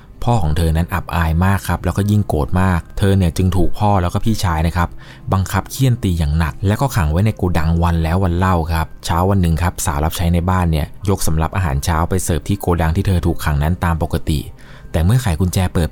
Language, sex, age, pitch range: Thai, male, 20-39, 80-95 Hz